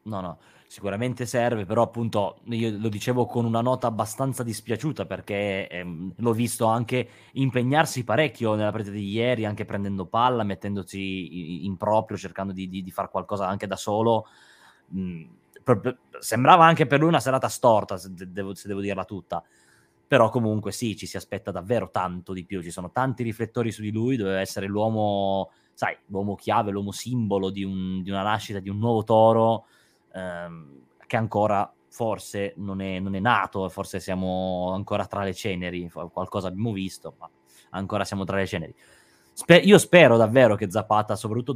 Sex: male